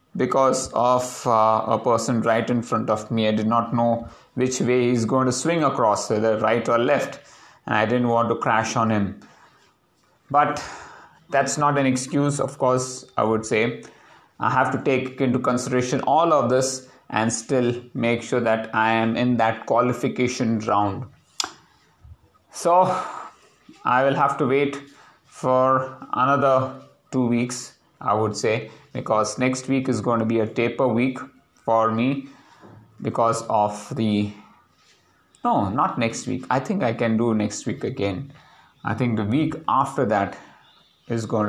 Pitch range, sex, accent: 110-130 Hz, male, Indian